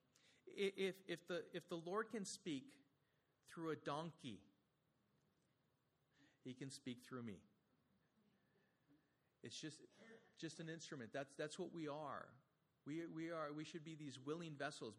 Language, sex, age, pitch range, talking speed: English, male, 40-59, 130-185 Hz, 140 wpm